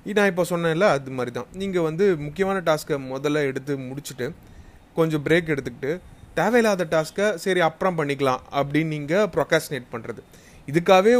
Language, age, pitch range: Tamil, 30-49, 130-180 Hz